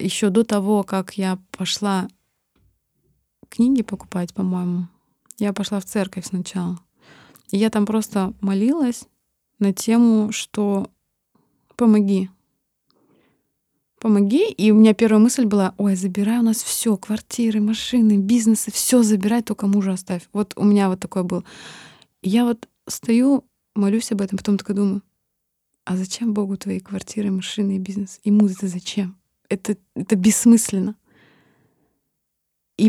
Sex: female